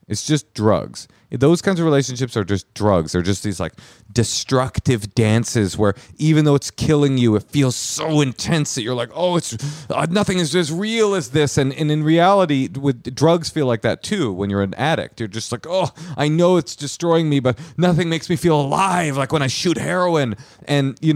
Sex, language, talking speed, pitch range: male, English, 210 wpm, 110-155 Hz